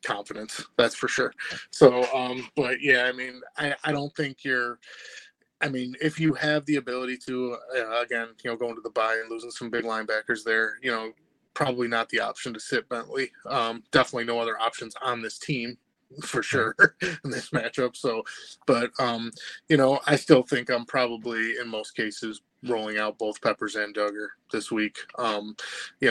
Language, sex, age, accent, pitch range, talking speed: English, male, 20-39, American, 110-125 Hz, 190 wpm